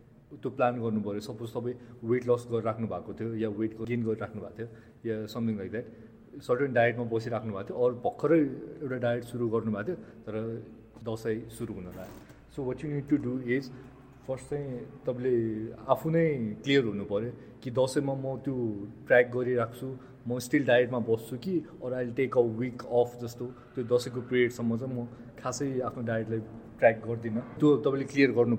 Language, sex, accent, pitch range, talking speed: English, male, Indian, 115-135 Hz, 100 wpm